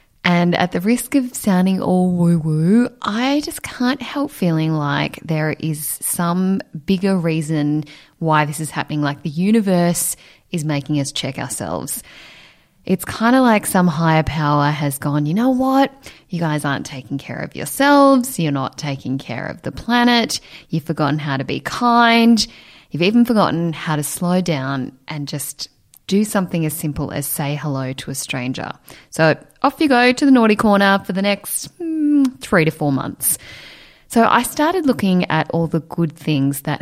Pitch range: 145-200 Hz